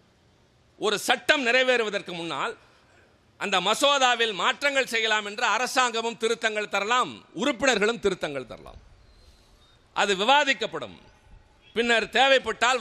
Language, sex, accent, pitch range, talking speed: Tamil, male, native, 140-230 Hz, 90 wpm